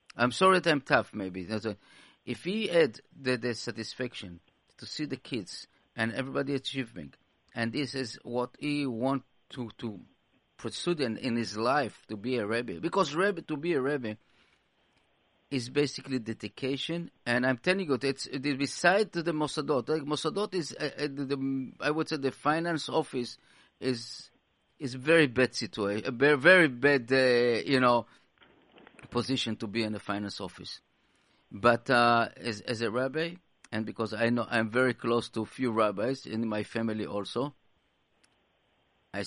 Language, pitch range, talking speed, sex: English, 105-135 Hz, 165 wpm, male